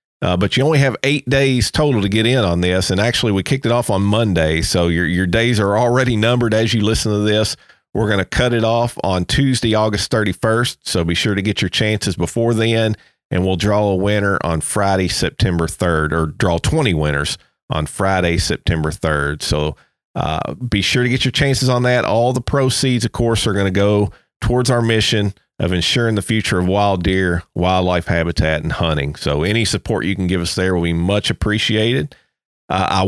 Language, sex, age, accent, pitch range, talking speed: English, male, 40-59, American, 95-115 Hz, 210 wpm